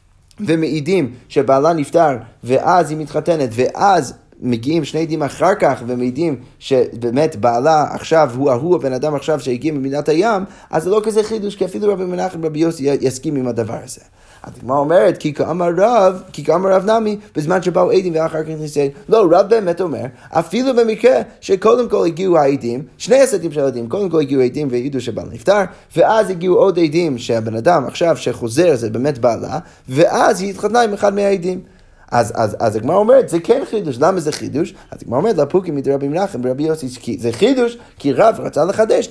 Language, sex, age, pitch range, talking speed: Hebrew, male, 30-49, 130-185 Hz, 175 wpm